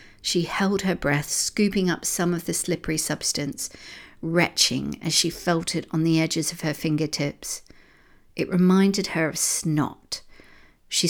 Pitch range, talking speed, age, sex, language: 155-180 Hz, 150 wpm, 50-69, female, English